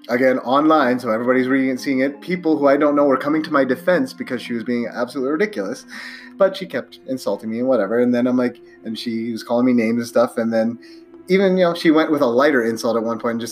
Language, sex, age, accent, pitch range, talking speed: English, male, 30-49, American, 115-180 Hz, 255 wpm